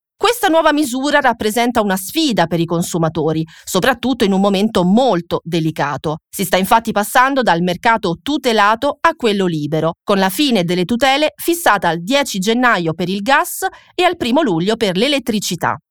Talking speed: 160 wpm